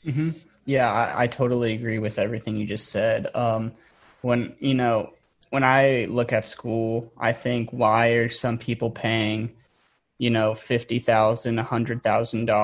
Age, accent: 20-39, American